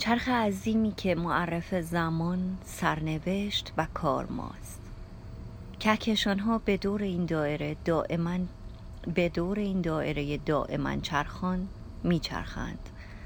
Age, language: 30-49, Persian